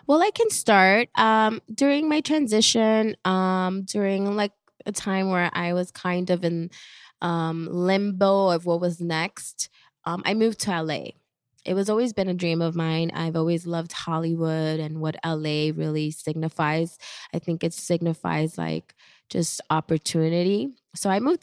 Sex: female